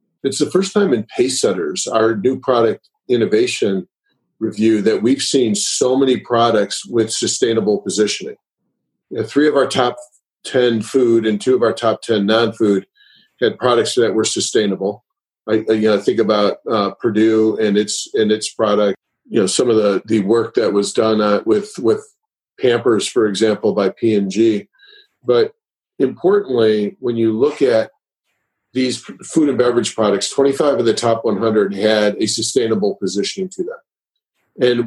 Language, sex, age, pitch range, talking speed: English, male, 40-59, 110-150 Hz, 160 wpm